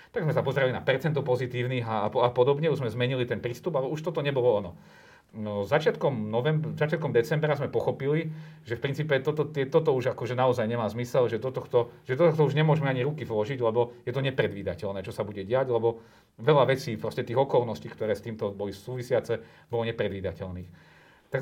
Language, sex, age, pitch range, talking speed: Slovak, male, 40-59, 115-155 Hz, 195 wpm